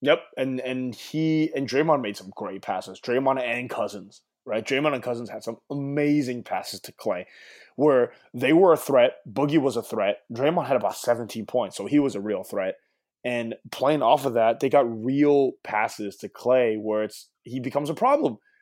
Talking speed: 195 wpm